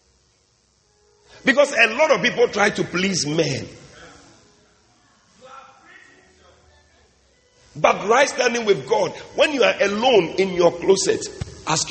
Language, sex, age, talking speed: English, male, 50-69, 110 wpm